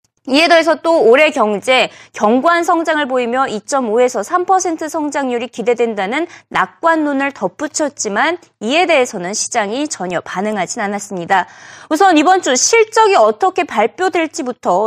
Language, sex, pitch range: Korean, female, 240-340 Hz